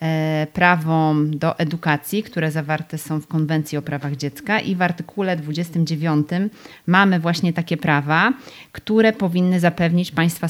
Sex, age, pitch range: female, 30-49, 150-185 Hz